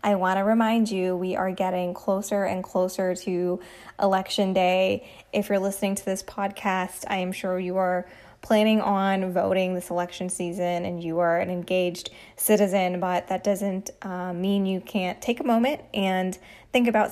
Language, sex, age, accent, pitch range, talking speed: English, female, 10-29, American, 185-205 Hz, 175 wpm